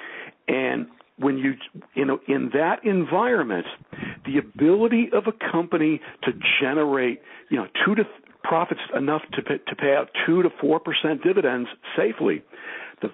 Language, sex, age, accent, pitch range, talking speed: English, male, 60-79, American, 145-205 Hz, 150 wpm